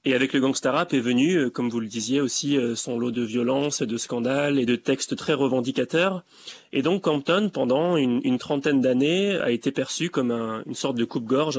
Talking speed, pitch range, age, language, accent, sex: 220 wpm, 125-155 Hz, 30-49, French, French, male